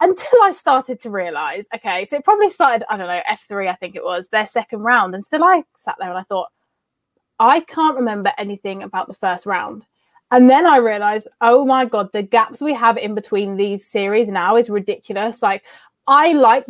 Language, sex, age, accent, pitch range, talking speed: English, female, 20-39, British, 210-255 Hz, 210 wpm